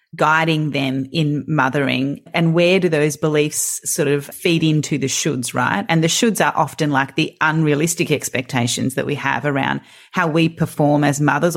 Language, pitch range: English, 145-180 Hz